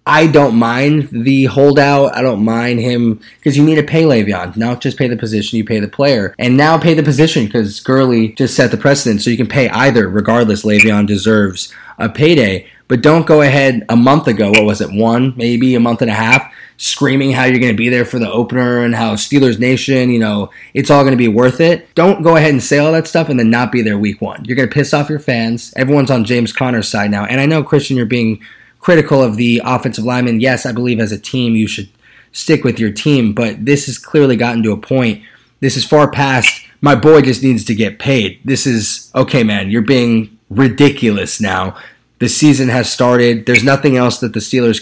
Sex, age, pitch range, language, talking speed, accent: male, 20-39, 115-140 Hz, English, 230 wpm, American